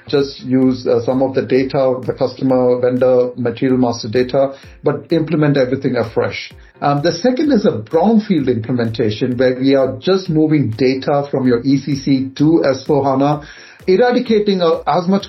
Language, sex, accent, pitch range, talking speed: English, male, Indian, 130-160 Hz, 155 wpm